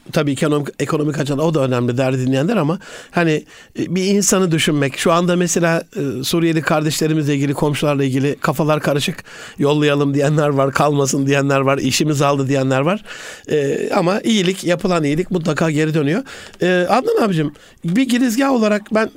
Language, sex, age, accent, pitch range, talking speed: Turkish, male, 60-79, native, 155-205 Hz, 150 wpm